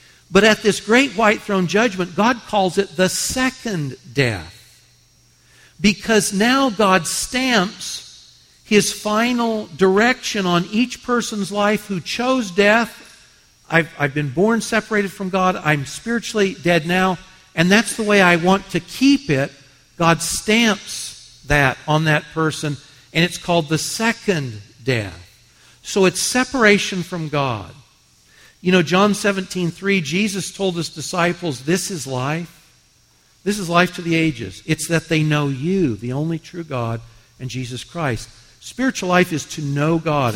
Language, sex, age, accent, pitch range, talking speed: English, male, 60-79, American, 145-205 Hz, 150 wpm